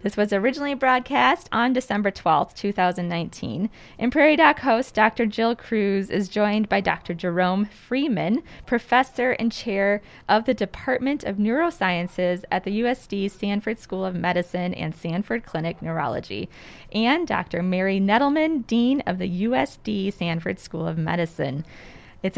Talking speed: 140 wpm